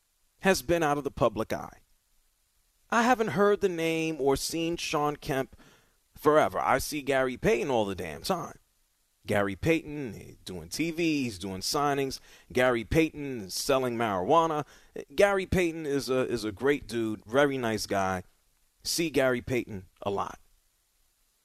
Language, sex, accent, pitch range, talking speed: English, male, American, 130-195 Hz, 150 wpm